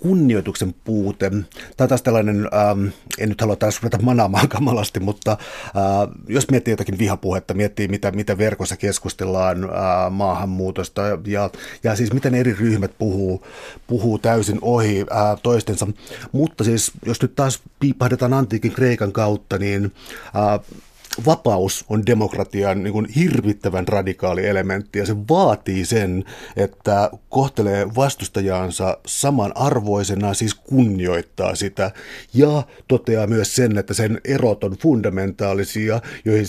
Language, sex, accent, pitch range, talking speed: Finnish, male, native, 100-125 Hz, 130 wpm